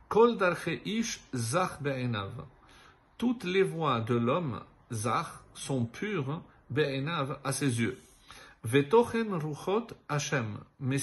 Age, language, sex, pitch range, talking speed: 50-69, French, male, 130-165 Hz, 70 wpm